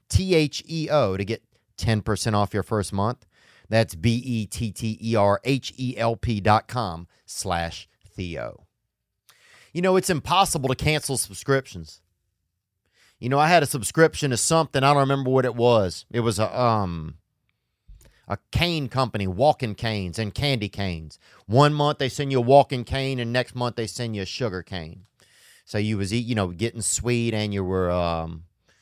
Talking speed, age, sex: 165 wpm, 30-49, male